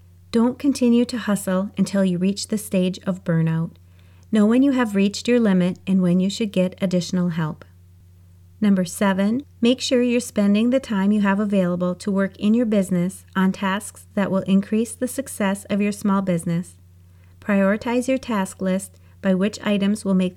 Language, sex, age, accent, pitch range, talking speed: English, female, 30-49, American, 175-210 Hz, 180 wpm